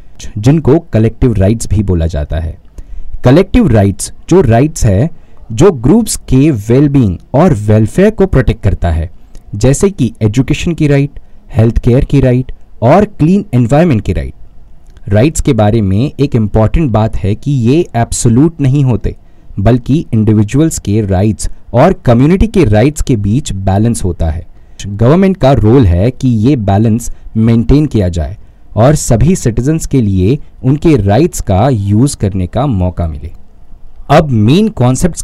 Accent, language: native, Hindi